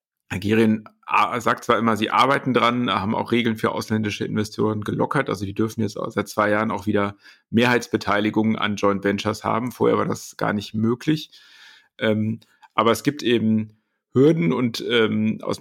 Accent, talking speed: German, 170 wpm